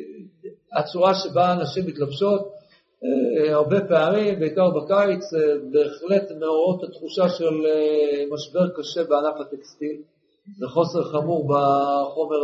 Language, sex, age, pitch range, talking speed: Hebrew, male, 50-69, 150-210 Hz, 95 wpm